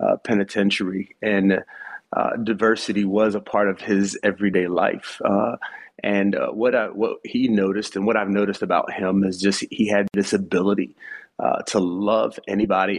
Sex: male